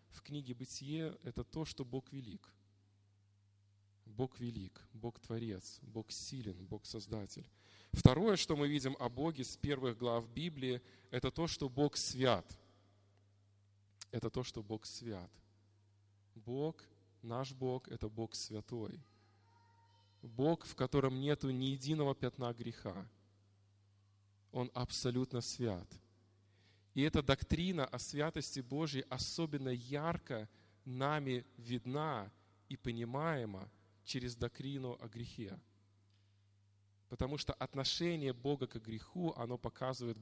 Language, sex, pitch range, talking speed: Russian, male, 100-135 Hz, 115 wpm